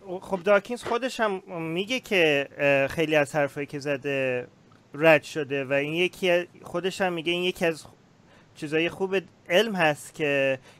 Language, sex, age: Persian, male, 30-49